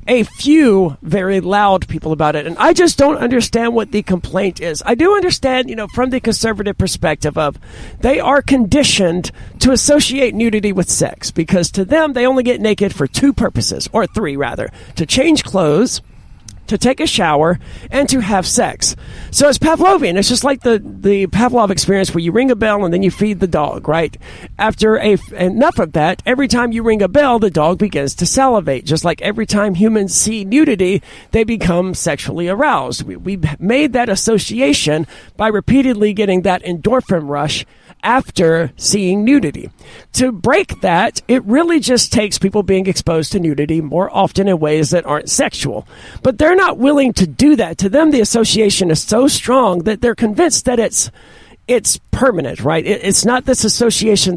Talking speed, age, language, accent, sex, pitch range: 185 wpm, 50-69, English, American, male, 180-250 Hz